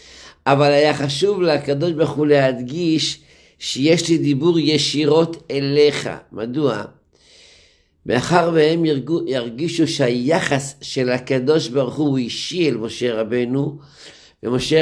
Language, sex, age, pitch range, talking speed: Hebrew, male, 50-69, 125-160 Hz, 105 wpm